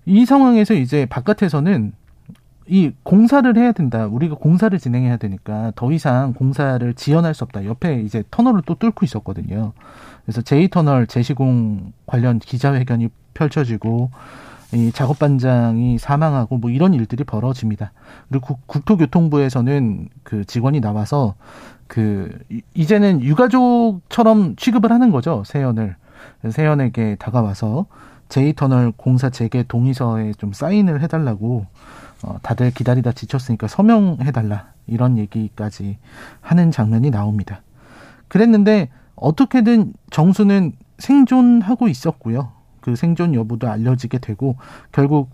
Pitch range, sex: 115-160 Hz, male